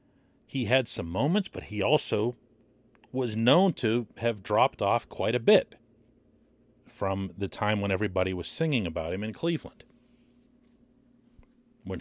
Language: English